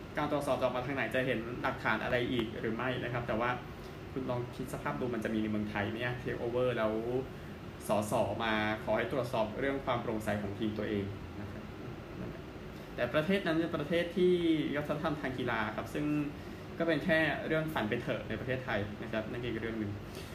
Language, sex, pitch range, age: Thai, male, 115-150 Hz, 20-39